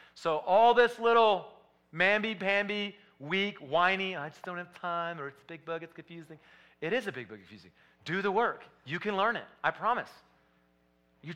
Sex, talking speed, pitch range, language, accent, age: male, 185 wpm, 110-155 Hz, English, American, 40-59